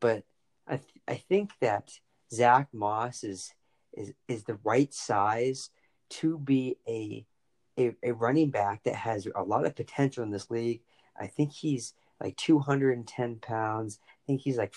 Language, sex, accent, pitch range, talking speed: English, male, American, 110-140 Hz, 165 wpm